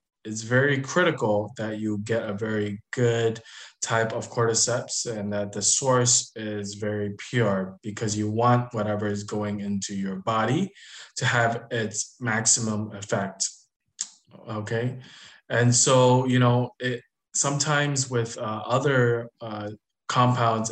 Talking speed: 125 wpm